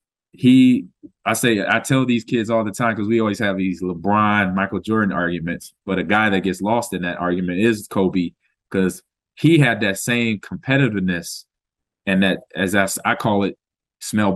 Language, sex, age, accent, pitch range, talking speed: English, male, 20-39, American, 95-115 Hz, 185 wpm